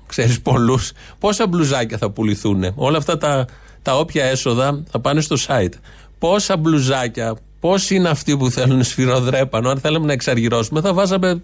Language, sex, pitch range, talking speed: Greek, male, 120-155 Hz, 155 wpm